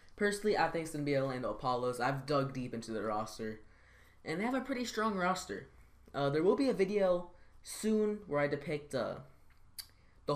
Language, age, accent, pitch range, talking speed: English, 10-29, American, 110-170 Hz, 190 wpm